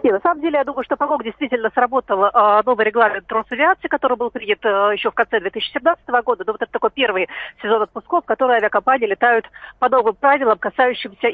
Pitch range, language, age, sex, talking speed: 220-265 Hz, Russian, 40-59, female, 200 wpm